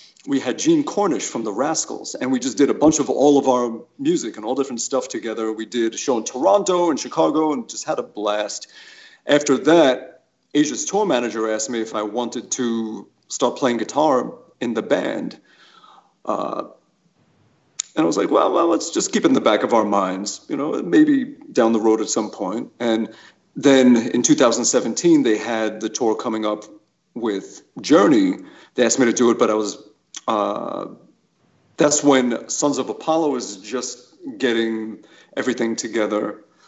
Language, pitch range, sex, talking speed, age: English, 110-150 Hz, male, 180 wpm, 40-59